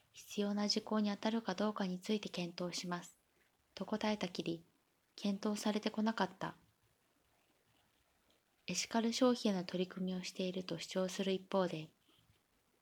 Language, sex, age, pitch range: Japanese, female, 20-39, 185-220 Hz